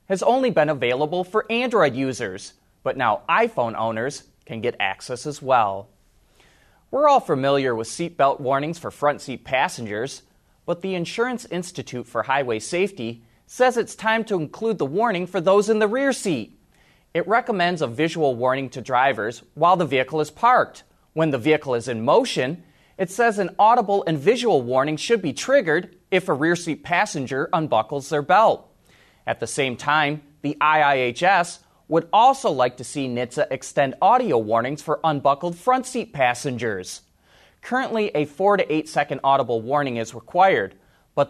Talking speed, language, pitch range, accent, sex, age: 165 wpm, English, 135-200 Hz, American, male, 30-49